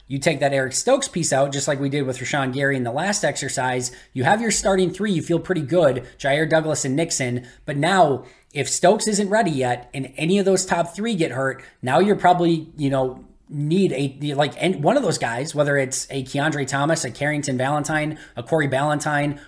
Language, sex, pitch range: English, male, 130-160 Hz